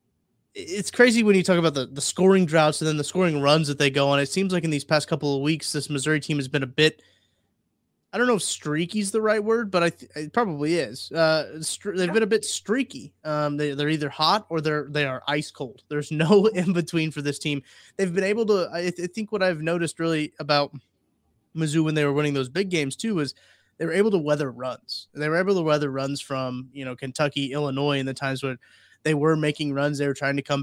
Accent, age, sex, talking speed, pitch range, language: American, 20-39, male, 250 wpm, 140-175 Hz, English